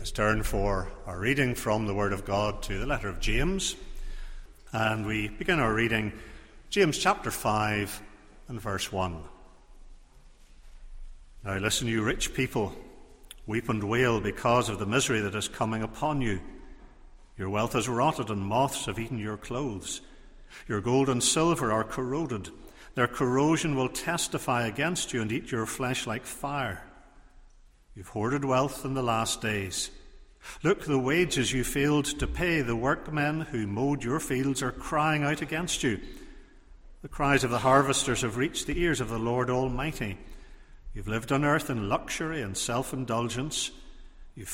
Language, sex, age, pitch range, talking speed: English, male, 60-79, 105-140 Hz, 160 wpm